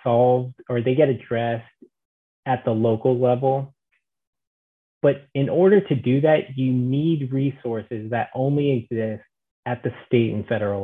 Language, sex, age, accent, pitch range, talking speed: English, male, 30-49, American, 115-140 Hz, 145 wpm